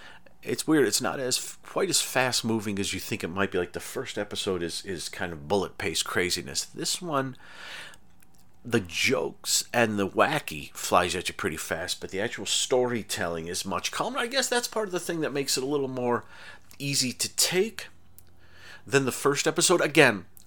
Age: 40-59